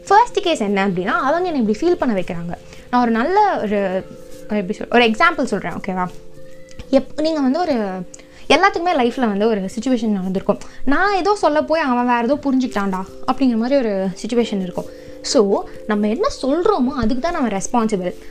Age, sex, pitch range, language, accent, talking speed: 20-39, female, 205-295 Hz, Tamil, native, 165 wpm